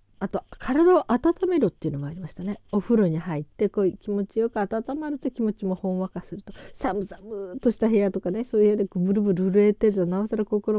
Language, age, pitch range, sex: Japanese, 40-59, 160-220 Hz, female